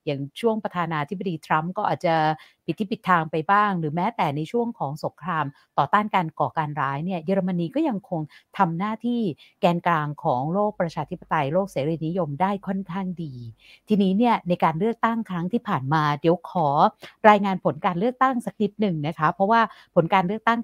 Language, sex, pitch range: Thai, female, 155-200 Hz